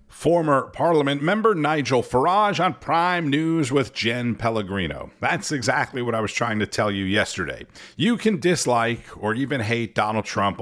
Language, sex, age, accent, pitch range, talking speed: English, male, 50-69, American, 95-140 Hz, 165 wpm